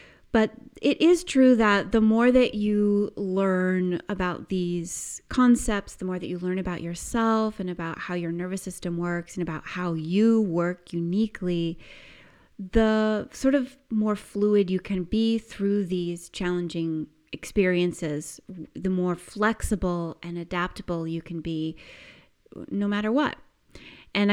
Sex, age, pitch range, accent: female, 30-49, 175-210 Hz, American